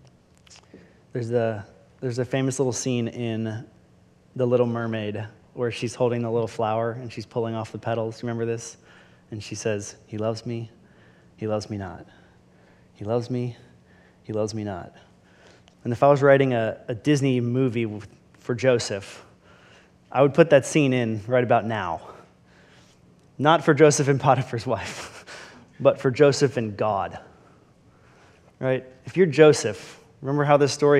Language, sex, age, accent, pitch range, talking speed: English, male, 20-39, American, 115-145 Hz, 155 wpm